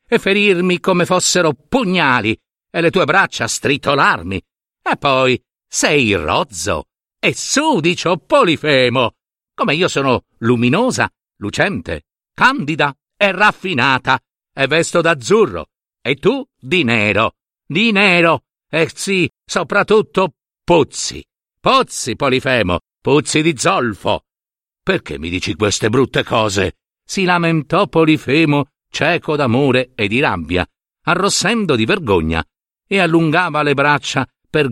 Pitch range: 125-180 Hz